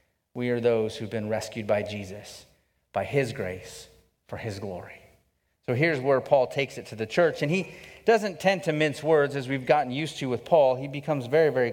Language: English